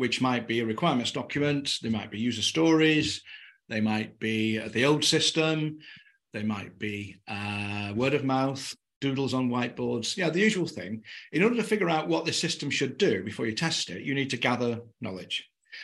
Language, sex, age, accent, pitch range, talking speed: English, male, 40-59, British, 115-160 Hz, 190 wpm